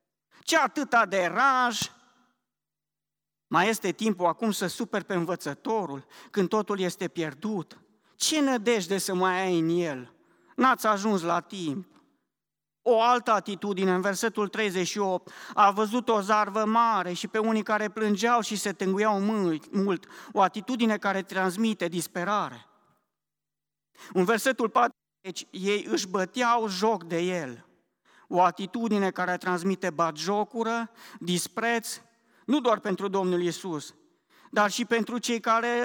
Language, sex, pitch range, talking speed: Romanian, male, 180-225 Hz, 130 wpm